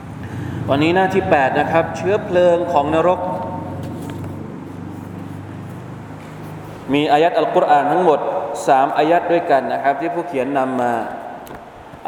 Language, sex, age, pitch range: Thai, male, 20-39, 135-160 Hz